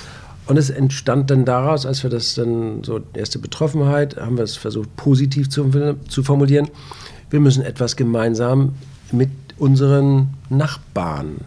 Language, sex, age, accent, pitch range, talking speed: German, male, 50-69, German, 115-135 Hz, 140 wpm